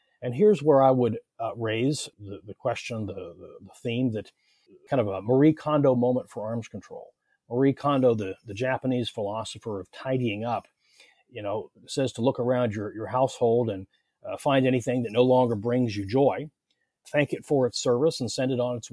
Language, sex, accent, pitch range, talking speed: English, male, American, 115-140 Hz, 195 wpm